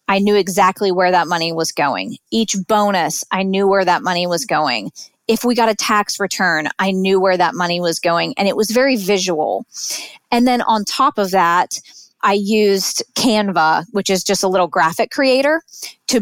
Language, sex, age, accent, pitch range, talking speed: English, female, 20-39, American, 180-220 Hz, 190 wpm